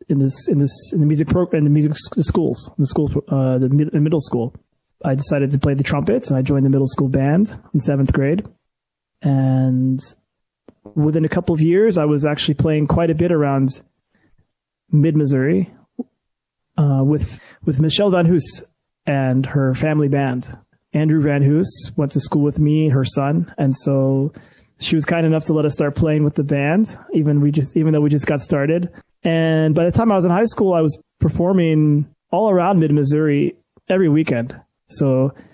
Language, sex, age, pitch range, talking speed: English, male, 20-39, 135-155 Hz, 190 wpm